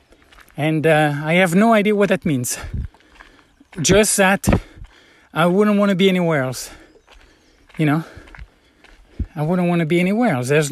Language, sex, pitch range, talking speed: English, male, 145-200 Hz, 155 wpm